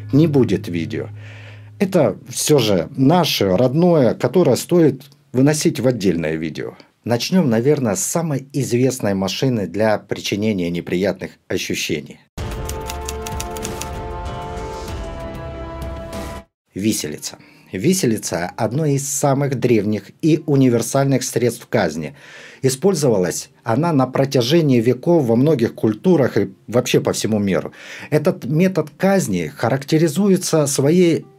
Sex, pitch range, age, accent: male, 110-155 Hz, 50-69, native